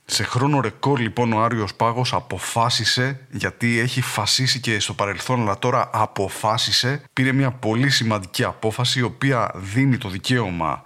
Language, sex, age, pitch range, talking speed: English, male, 30-49, 110-130 Hz, 150 wpm